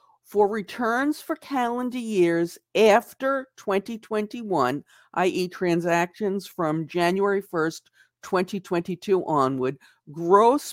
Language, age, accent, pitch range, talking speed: English, 50-69, American, 155-210 Hz, 85 wpm